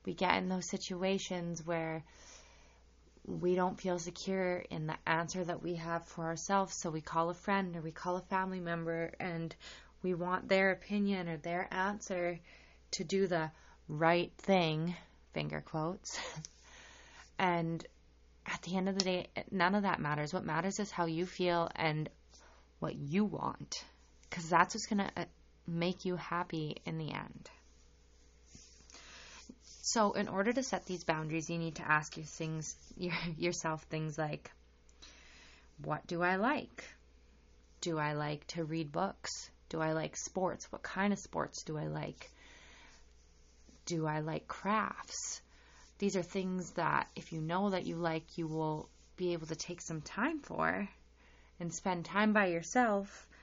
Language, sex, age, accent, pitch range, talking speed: English, female, 20-39, American, 155-185 Hz, 155 wpm